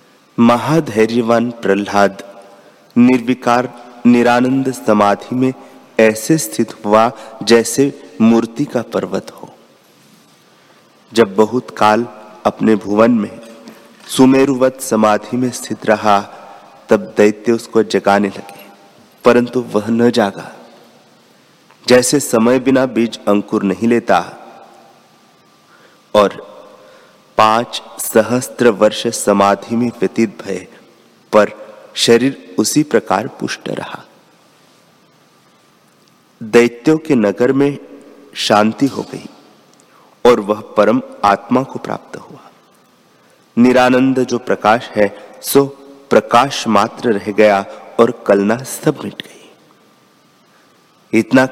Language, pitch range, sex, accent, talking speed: Hindi, 105-125 Hz, male, native, 100 wpm